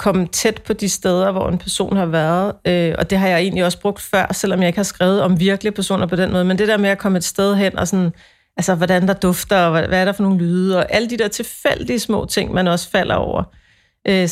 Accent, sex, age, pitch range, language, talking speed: native, female, 40-59, 175-205 Hz, Danish, 270 wpm